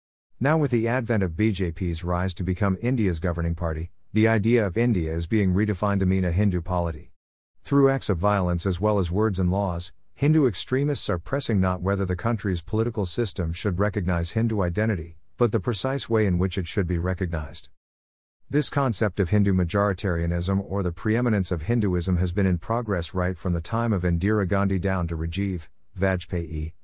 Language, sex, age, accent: English, male, 50-69, American